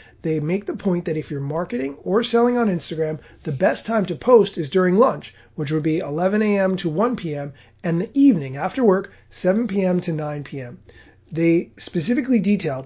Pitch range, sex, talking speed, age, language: 155-205 Hz, male, 190 wpm, 30-49, English